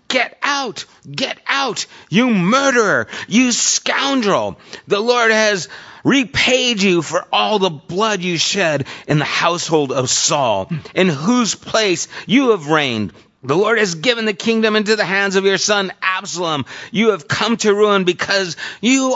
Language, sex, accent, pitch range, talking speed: English, male, American, 130-195 Hz, 155 wpm